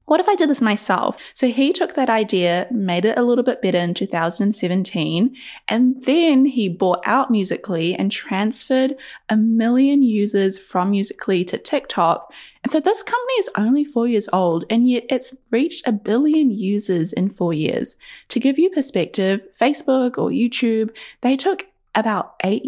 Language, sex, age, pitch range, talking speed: English, female, 10-29, 200-265 Hz, 170 wpm